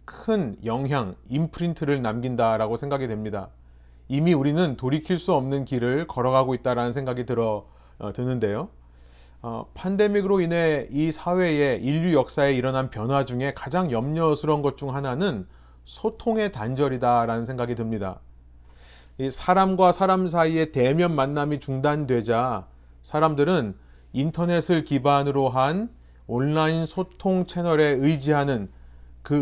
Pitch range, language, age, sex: 115-170 Hz, Korean, 30-49, male